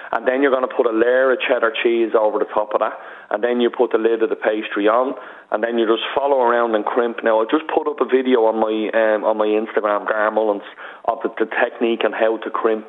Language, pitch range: English, 110-130 Hz